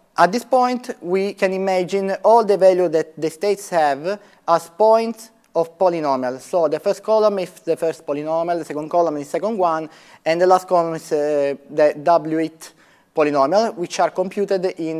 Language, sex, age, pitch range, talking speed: English, male, 30-49, 155-195 Hz, 180 wpm